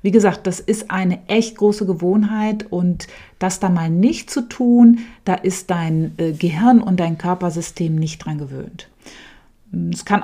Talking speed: 160 wpm